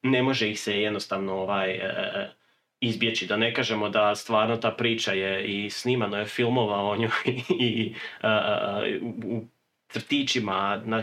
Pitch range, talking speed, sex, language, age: 105-125 Hz, 135 wpm, male, Croatian, 30-49